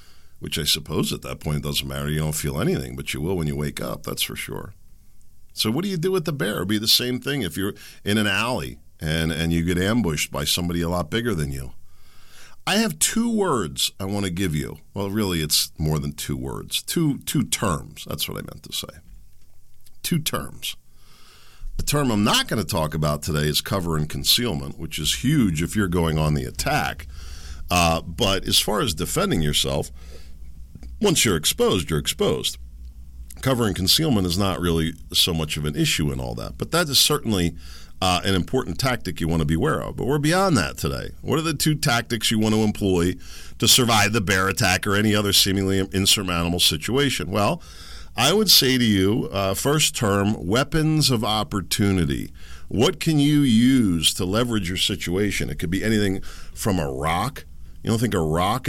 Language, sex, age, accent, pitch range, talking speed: English, male, 50-69, American, 75-110 Hz, 205 wpm